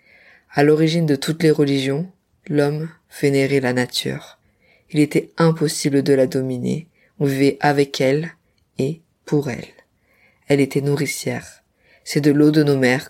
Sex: female